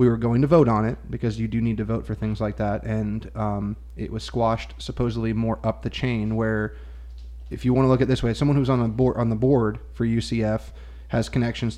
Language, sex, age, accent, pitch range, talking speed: English, male, 20-39, American, 110-120 Hz, 245 wpm